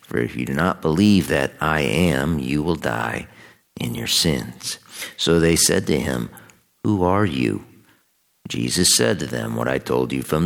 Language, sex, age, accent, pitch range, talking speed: English, male, 50-69, American, 65-90 Hz, 185 wpm